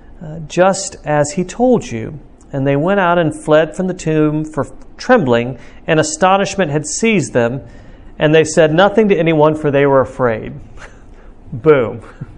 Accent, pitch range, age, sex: American, 150-200 Hz, 50-69, male